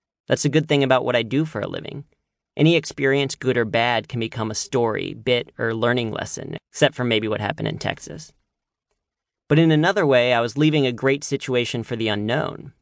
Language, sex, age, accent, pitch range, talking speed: English, male, 30-49, American, 115-135 Hz, 205 wpm